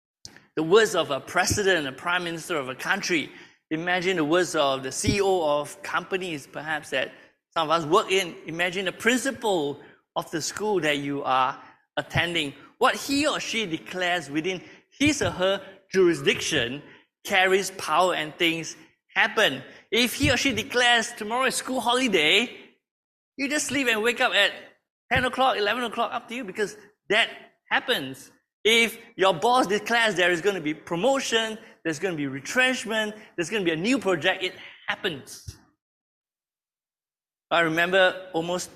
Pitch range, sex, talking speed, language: 160-215 Hz, male, 160 wpm, English